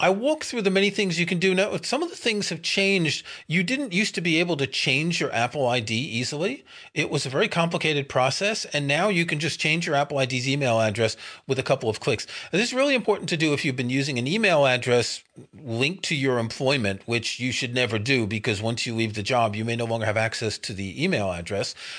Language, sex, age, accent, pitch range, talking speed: English, male, 40-59, American, 120-165 Hz, 240 wpm